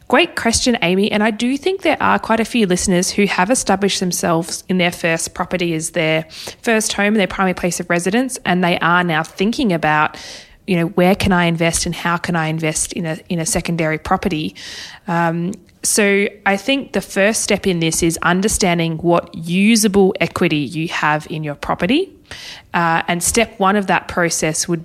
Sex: female